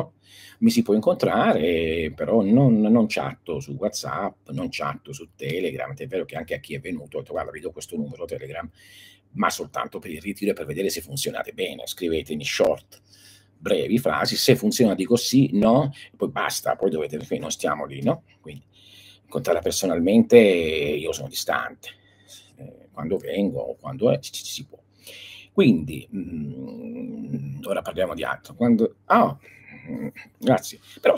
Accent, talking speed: native, 165 wpm